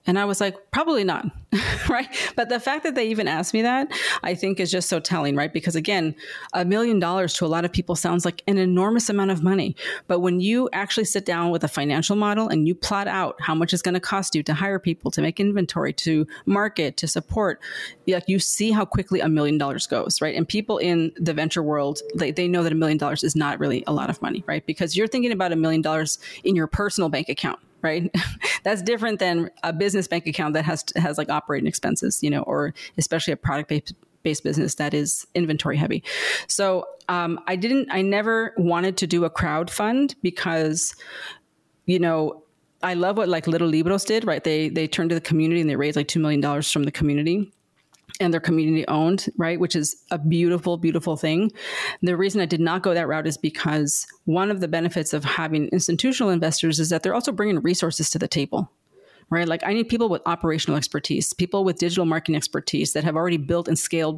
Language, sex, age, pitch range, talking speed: English, female, 30-49, 160-195 Hz, 220 wpm